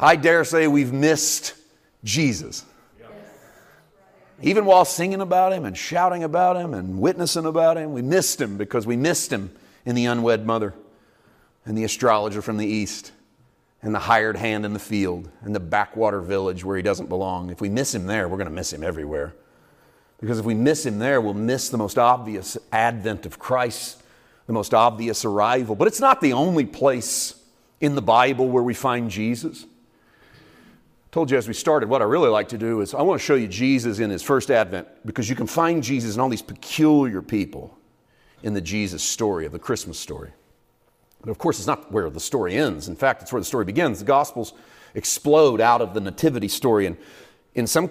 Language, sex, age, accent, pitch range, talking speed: English, male, 40-59, American, 105-140 Hz, 200 wpm